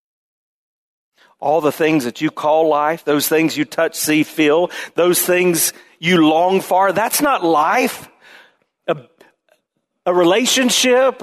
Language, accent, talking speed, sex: English, American, 130 wpm, male